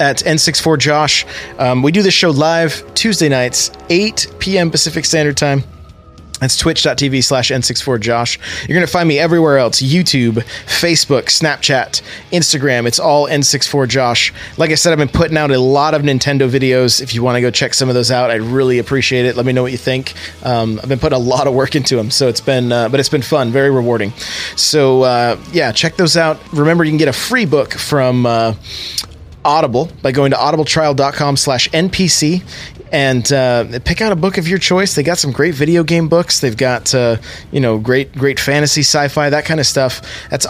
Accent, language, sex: American, English, male